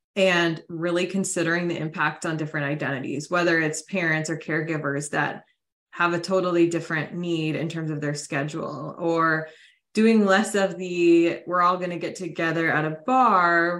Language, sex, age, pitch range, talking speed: English, female, 20-39, 160-190 Hz, 165 wpm